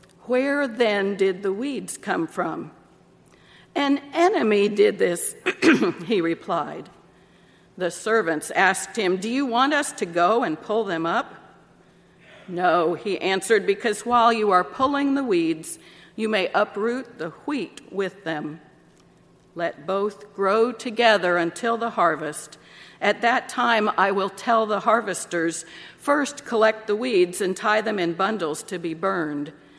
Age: 50-69